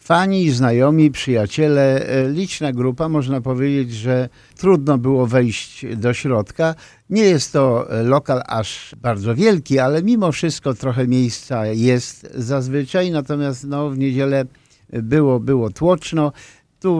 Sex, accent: male, native